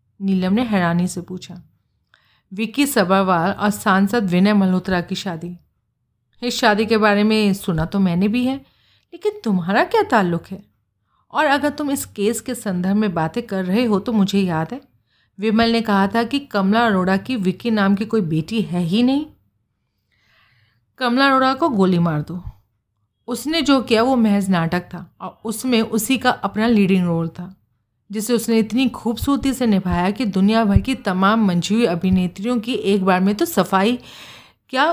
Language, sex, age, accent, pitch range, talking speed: Hindi, female, 40-59, native, 180-230 Hz, 175 wpm